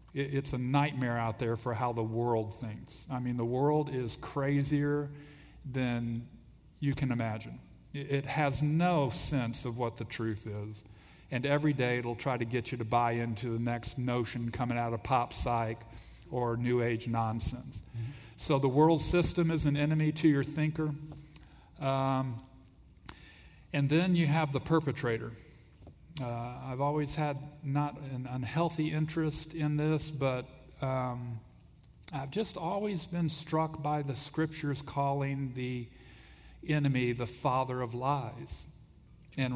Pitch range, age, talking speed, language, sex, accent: 120-145 Hz, 50-69, 150 wpm, English, male, American